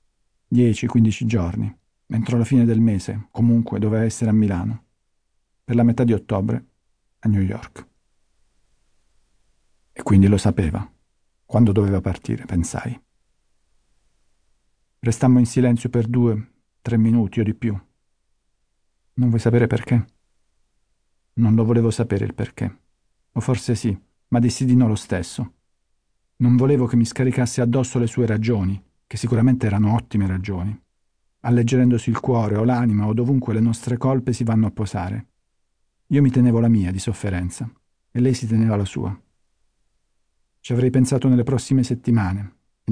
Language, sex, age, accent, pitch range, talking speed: Italian, male, 50-69, native, 105-120 Hz, 150 wpm